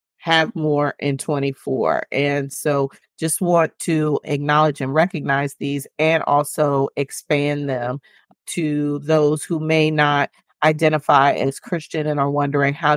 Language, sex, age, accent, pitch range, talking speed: English, female, 40-59, American, 140-155 Hz, 135 wpm